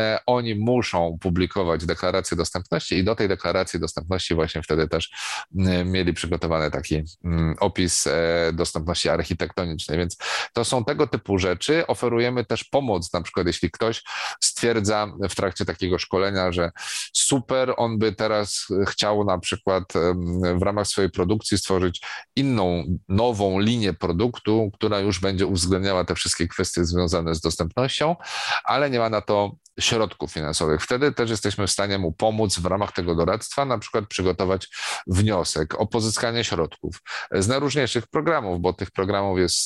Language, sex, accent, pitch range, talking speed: Polish, male, native, 90-110 Hz, 145 wpm